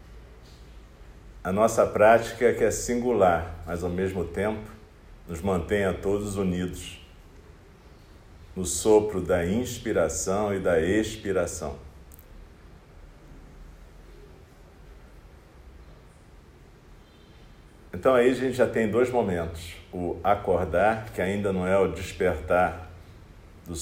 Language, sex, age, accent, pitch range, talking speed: Portuguese, male, 40-59, Brazilian, 80-100 Hz, 100 wpm